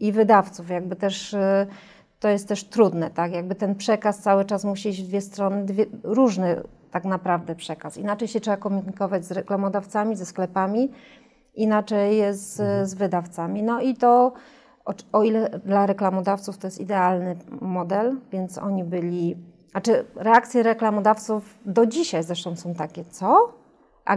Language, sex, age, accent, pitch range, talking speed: Polish, female, 30-49, native, 185-225 Hz, 155 wpm